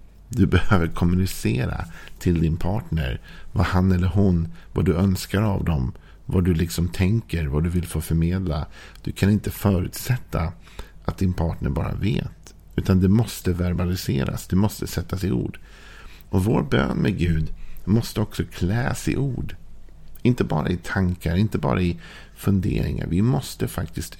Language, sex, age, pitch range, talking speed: Swedish, male, 50-69, 80-95 Hz, 160 wpm